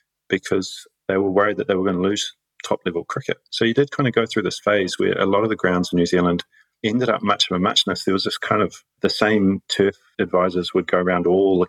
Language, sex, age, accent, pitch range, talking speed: English, male, 30-49, British, 90-105 Hz, 255 wpm